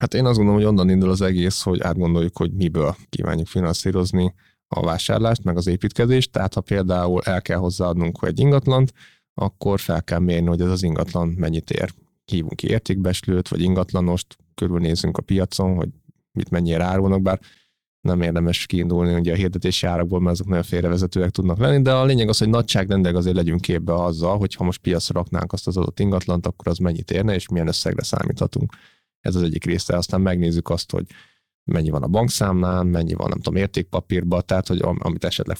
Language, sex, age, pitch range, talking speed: Hungarian, male, 30-49, 85-100 Hz, 190 wpm